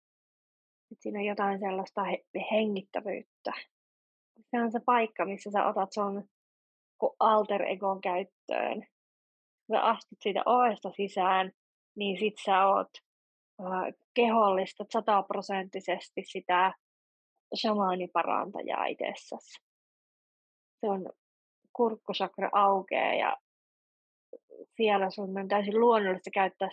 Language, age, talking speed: Finnish, 20-39, 85 wpm